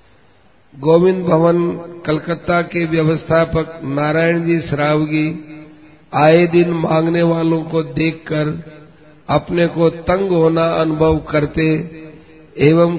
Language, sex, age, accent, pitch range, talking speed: Hindi, male, 50-69, native, 150-170 Hz, 95 wpm